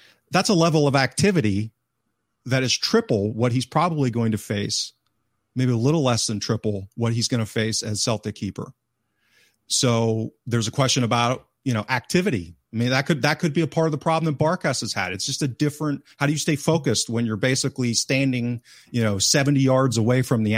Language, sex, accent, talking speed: English, male, American, 210 wpm